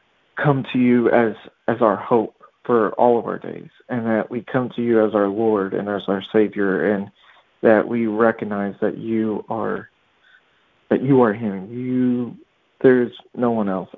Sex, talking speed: male, 175 wpm